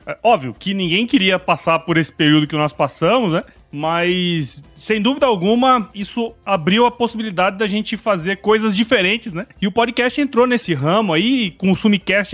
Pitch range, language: 165-225 Hz, Portuguese